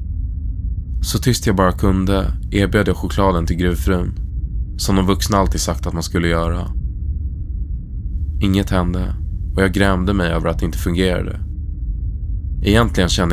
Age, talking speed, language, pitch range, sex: 20-39, 140 wpm, Swedish, 80-95 Hz, male